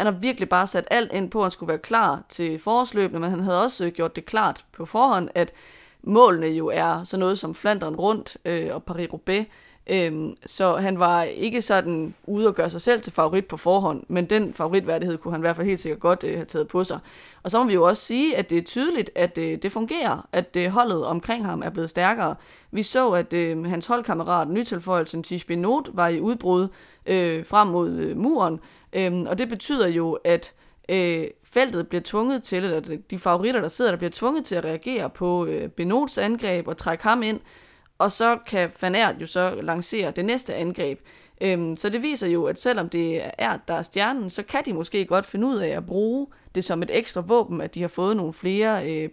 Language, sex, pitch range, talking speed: Danish, female, 170-215 Hz, 225 wpm